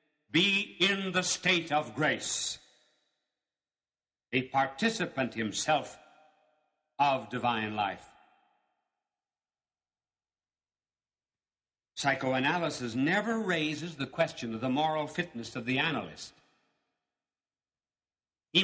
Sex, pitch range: male, 120-165 Hz